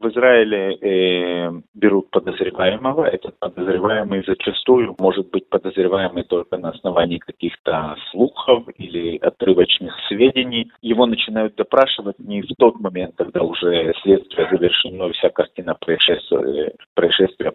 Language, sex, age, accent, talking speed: Russian, male, 40-59, native, 120 wpm